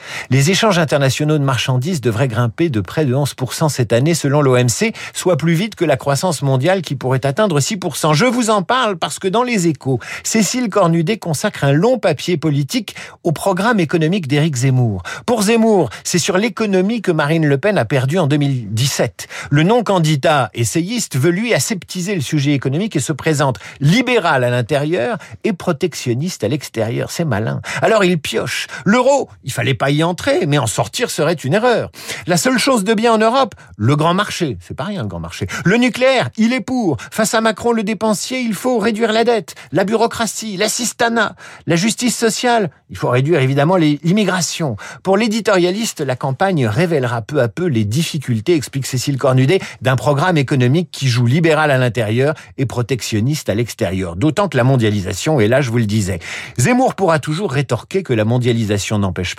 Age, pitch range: 50-69, 130-205 Hz